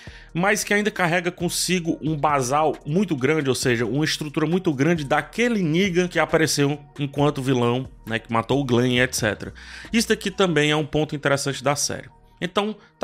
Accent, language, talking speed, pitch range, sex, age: Brazilian, Portuguese, 175 wpm, 120-160 Hz, male, 20-39